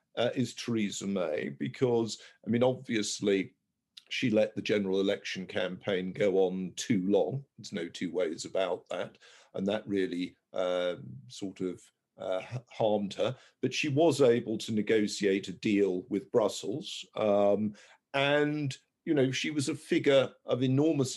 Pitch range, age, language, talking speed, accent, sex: 105-130 Hz, 50-69, English, 150 wpm, British, male